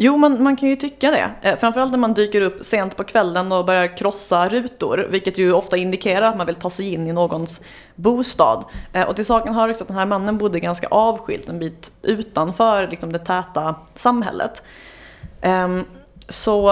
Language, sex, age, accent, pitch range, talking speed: English, female, 30-49, Swedish, 180-230 Hz, 185 wpm